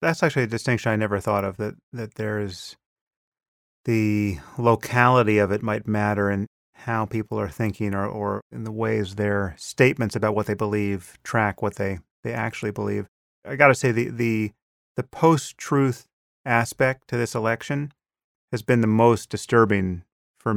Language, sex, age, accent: English, male, 30-49, American